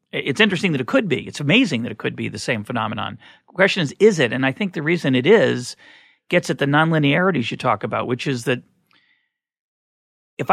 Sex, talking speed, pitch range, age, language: male, 215 wpm, 125-160 Hz, 40-59, English